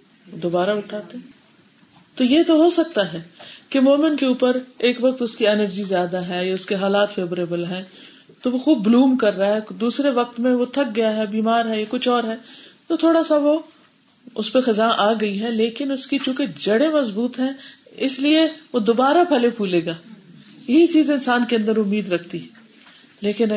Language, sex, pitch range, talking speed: Urdu, female, 205-265 Hz, 195 wpm